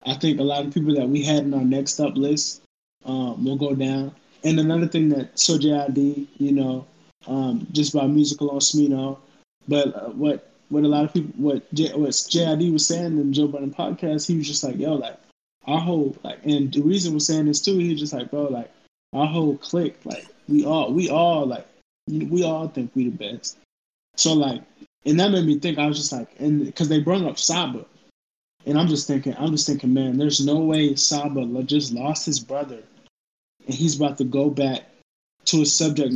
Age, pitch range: 20-39, 140-160 Hz